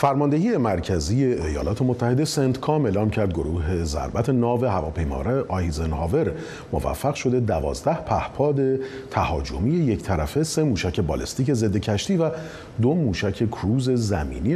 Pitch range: 90-130 Hz